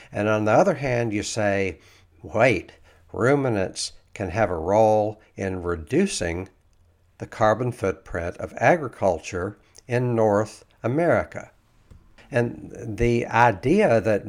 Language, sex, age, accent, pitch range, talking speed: English, male, 60-79, American, 100-120 Hz, 115 wpm